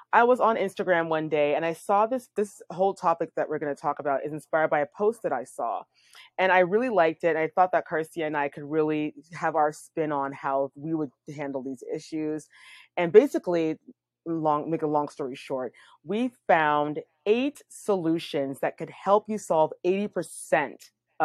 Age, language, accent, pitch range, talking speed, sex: 20-39, English, American, 150-185 Hz, 190 wpm, female